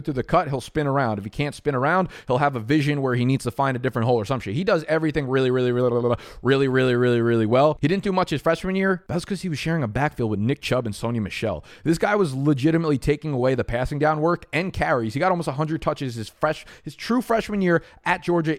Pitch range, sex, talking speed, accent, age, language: 115-155 Hz, male, 265 wpm, American, 20-39, English